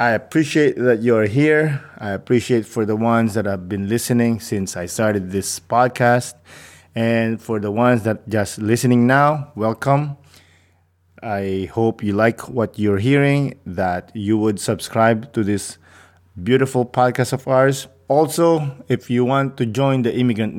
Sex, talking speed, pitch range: male, 155 wpm, 105-135 Hz